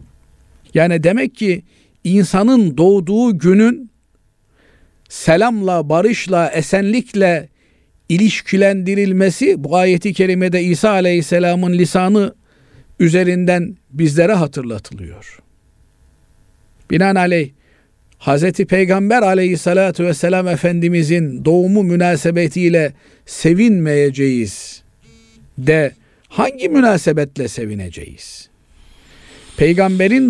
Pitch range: 150-195 Hz